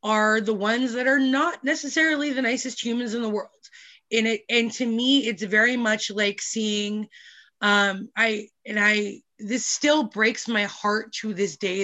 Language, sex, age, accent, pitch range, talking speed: English, female, 20-39, American, 200-235 Hz, 175 wpm